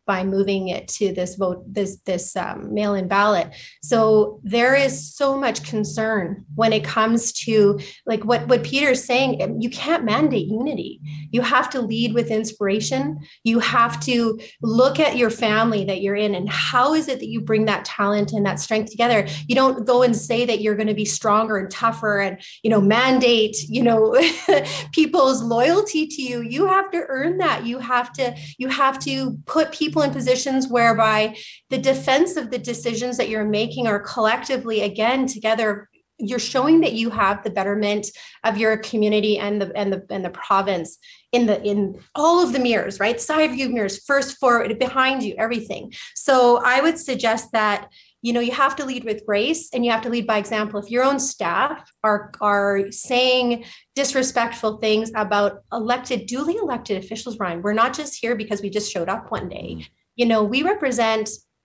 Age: 30-49